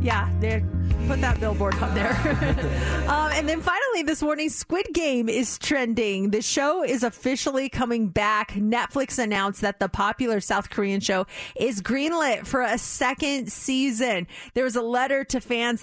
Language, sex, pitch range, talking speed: English, female, 200-270 Hz, 160 wpm